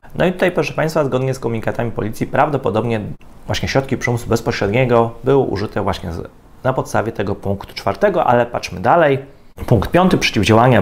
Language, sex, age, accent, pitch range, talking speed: Polish, male, 30-49, native, 105-140 Hz, 160 wpm